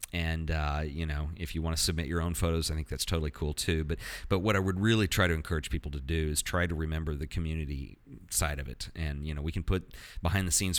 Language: English